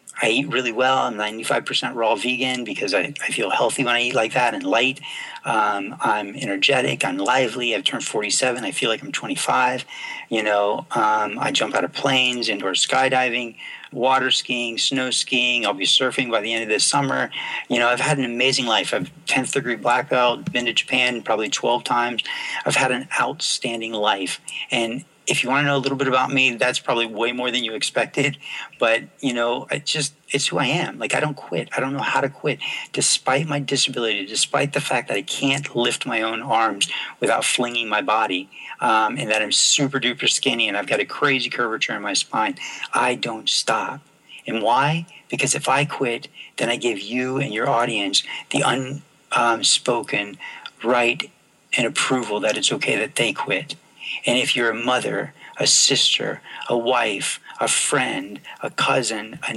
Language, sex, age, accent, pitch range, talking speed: English, male, 40-59, American, 115-130 Hz, 195 wpm